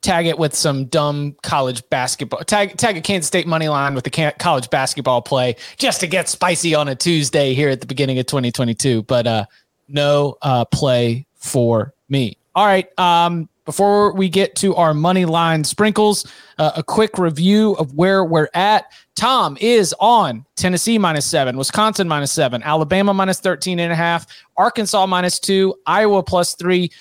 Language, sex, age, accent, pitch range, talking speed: English, male, 30-49, American, 150-190 Hz, 175 wpm